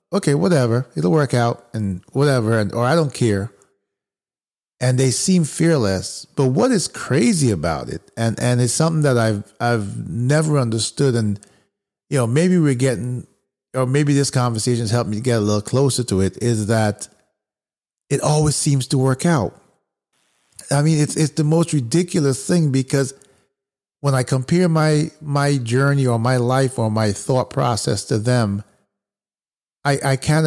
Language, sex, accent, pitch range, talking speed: English, male, American, 115-145 Hz, 165 wpm